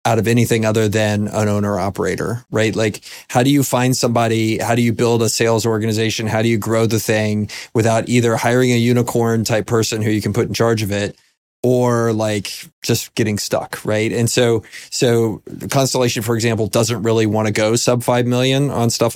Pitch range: 110-125 Hz